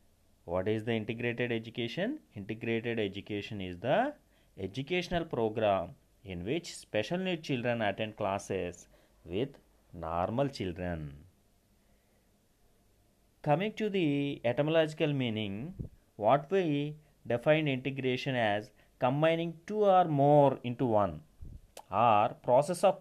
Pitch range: 105-150 Hz